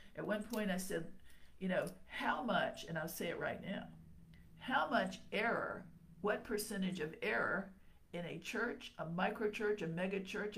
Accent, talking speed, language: American, 165 wpm, English